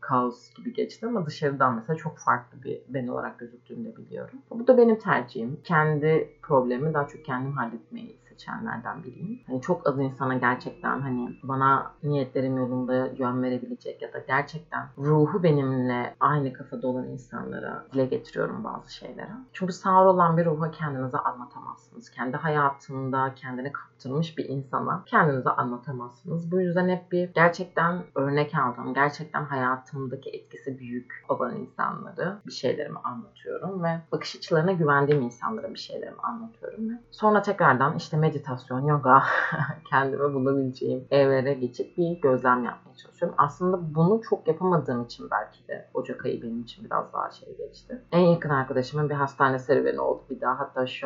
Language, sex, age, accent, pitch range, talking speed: Turkish, female, 30-49, native, 130-180 Hz, 150 wpm